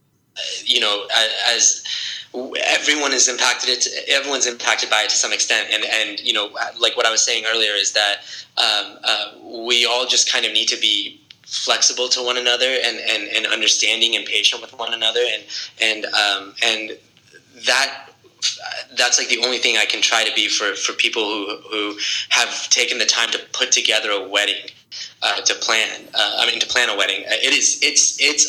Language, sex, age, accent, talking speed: English, male, 20-39, American, 190 wpm